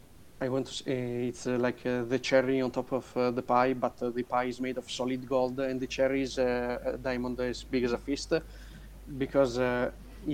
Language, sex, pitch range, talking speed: English, male, 125-135 Hz, 225 wpm